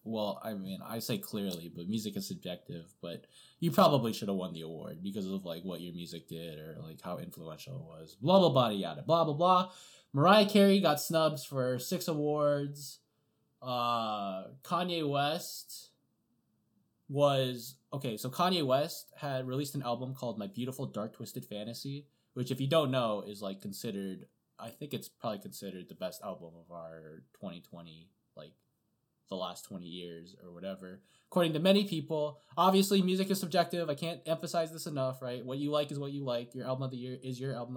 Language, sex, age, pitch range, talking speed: English, male, 20-39, 105-150 Hz, 185 wpm